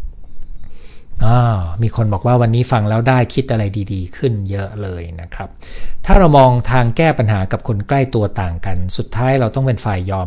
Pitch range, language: 95-130 Hz, Thai